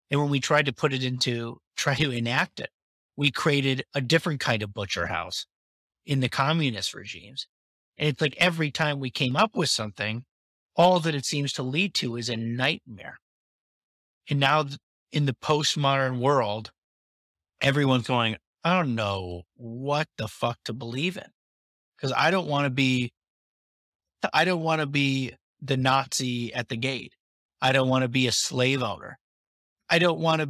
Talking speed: 175 wpm